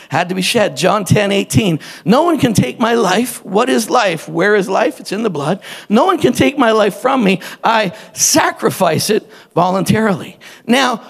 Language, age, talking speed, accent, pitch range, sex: English, 50-69, 195 wpm, American, 175-265 Hz, male